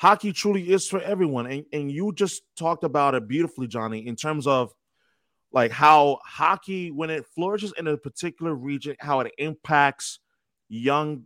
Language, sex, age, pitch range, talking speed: English, male, 30-49, 140-205 Hz, 165 wpm